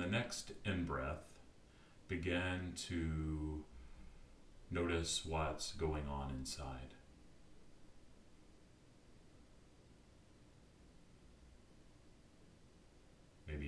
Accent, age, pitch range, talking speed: American, 40-59, 70-90 Hz, 50 wpm